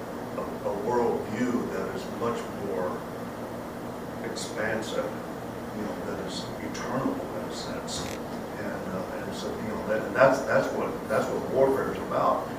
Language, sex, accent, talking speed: English, male, American, 155 wpm